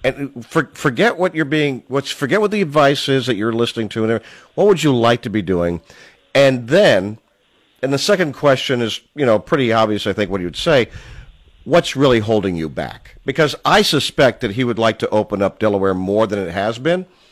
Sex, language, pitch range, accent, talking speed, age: male, English, 110-140 Hz, American, 215 wpm, 50-69